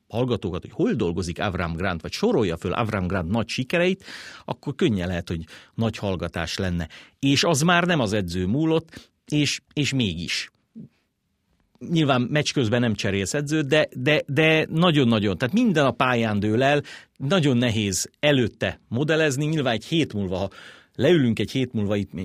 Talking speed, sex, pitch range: 155 wpm, male, 95-140 Hz